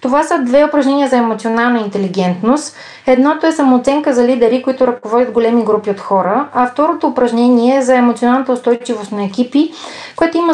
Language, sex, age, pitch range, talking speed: Bulgarian, female, 20-39, 215-255 Hz, 165 wpm